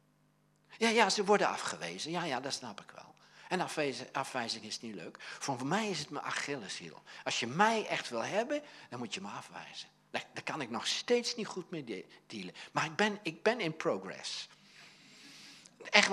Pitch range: 145-230 Hz